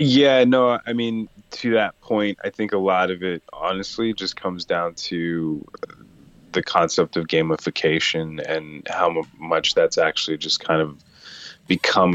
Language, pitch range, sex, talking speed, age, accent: English, 80-90 Hz, male, 155 wpm, 20-39, American